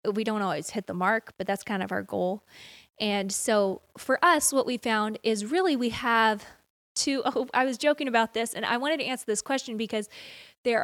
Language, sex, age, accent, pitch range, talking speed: English, female, 20-39, American, 205-250 Hz, 215 wpm